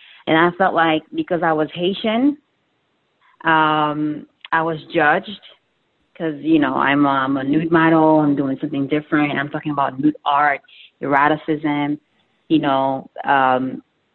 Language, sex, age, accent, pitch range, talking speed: English, female, 30-49, American, 155-200 Hz, 145 wpm